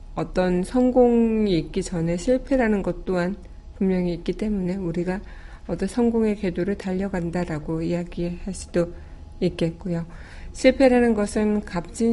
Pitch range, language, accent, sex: 170-210 Hz, Korean, native, female